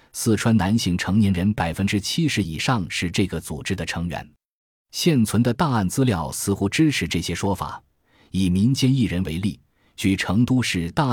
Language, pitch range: Chinese, 85-110 Hz